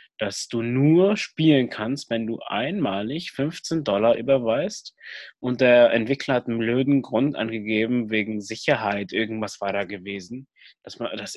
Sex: male